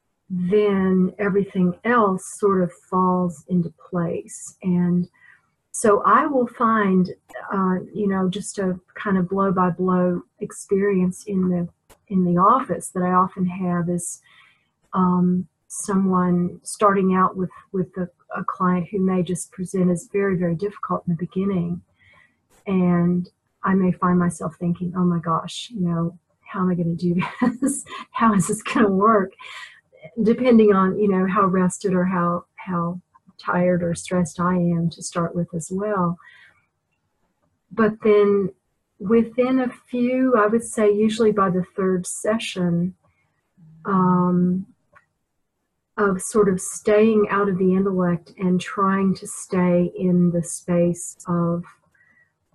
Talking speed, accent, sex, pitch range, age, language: 145 wpm, American, female, 175-200 Hz, 40-59, English